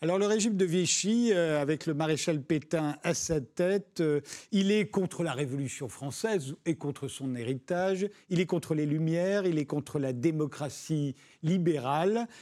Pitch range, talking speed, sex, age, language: 145-195 Hz, 170 wpm, male, 50-69, French